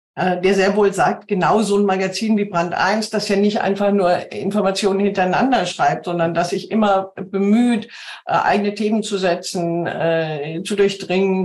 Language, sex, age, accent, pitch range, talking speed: German, female, 50-69, German, 180-210 Hz, 155 wpm